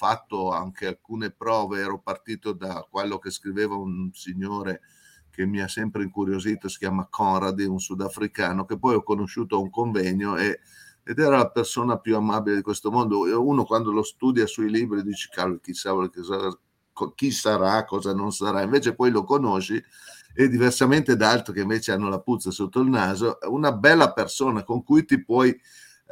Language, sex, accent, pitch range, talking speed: Italian, male, native, 100-145 Hz, 180 wpm